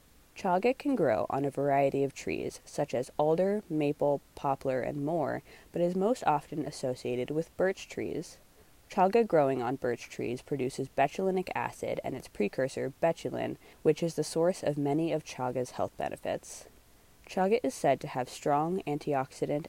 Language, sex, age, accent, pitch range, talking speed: English, female, 20-39, American, 130-175 Hz, 160 wpm